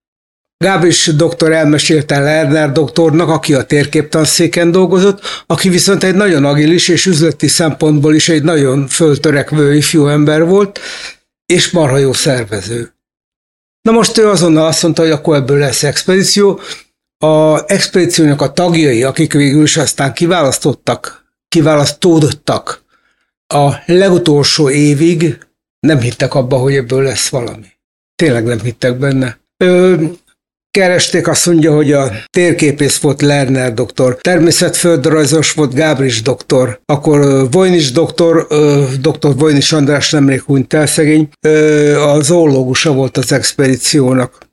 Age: 60-79